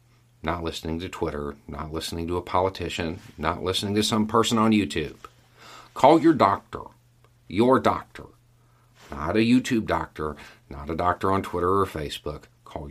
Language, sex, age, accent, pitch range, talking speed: English, male, 50-69, American, 85-120 Hz, 155 wpm